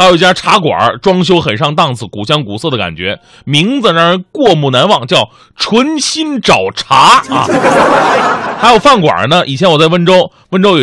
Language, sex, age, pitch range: Chinese, male, 30-49, 145-215 Hz